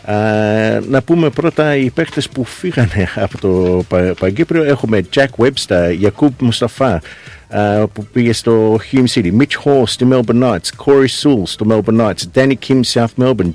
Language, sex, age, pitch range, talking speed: Greek, male, 50-69, 105-135 Hz, 165 wpm